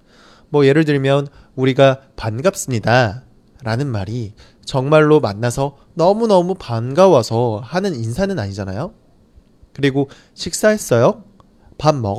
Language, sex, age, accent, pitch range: Chinese, male, 20-39, Korean, 115-160 Hz